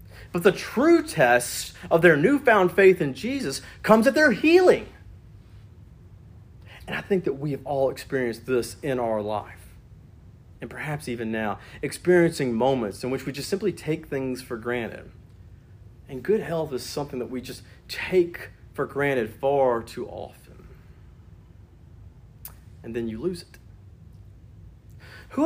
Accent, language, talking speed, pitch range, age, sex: American, English, 145 wpm, 105-170 Hz, 40-59, male